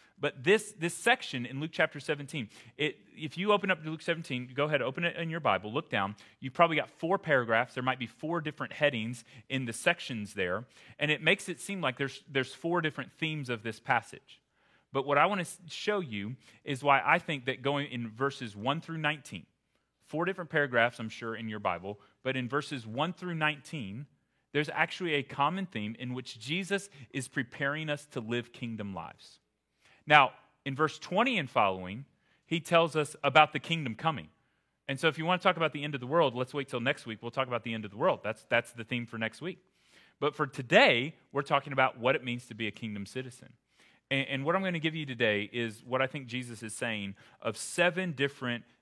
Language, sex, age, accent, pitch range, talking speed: English, male, 30-49, American, 115-155 Hz, 220 wpm